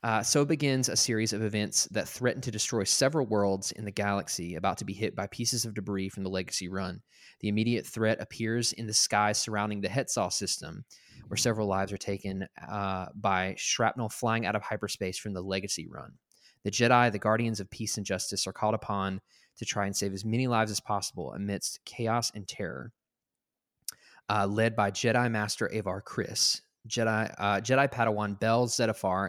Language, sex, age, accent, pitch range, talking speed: English, male, 20-39, American, 100-115 Hz, 190 wpm